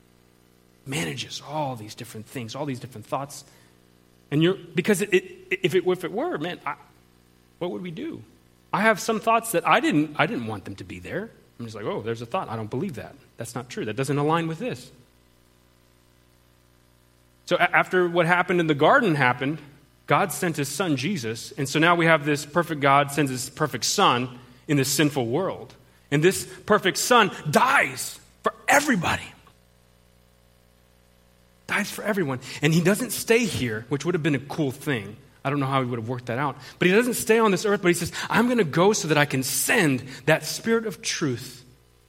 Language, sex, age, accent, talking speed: English, male, 30-49, American, 205 wpm